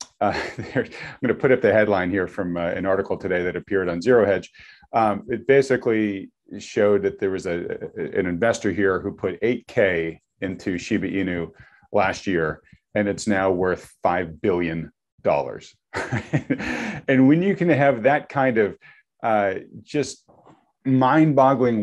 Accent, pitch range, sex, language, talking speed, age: American, 90-120 Hz, male, English, 155 wpm, 40-59